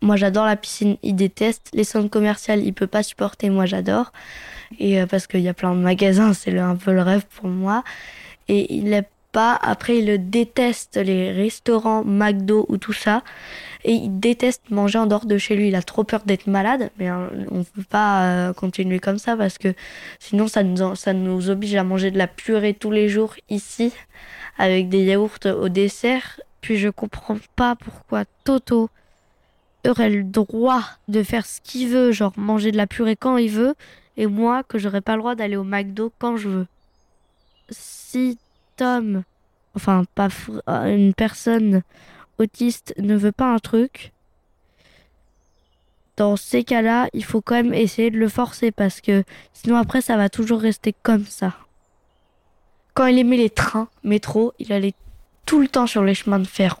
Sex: female